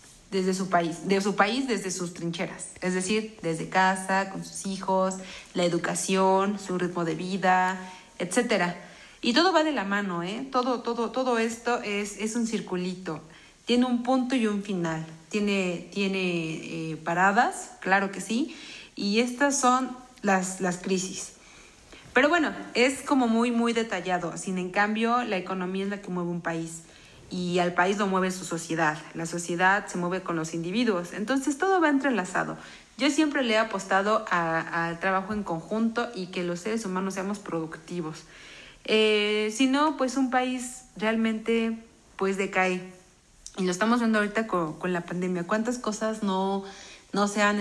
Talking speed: 170 wpm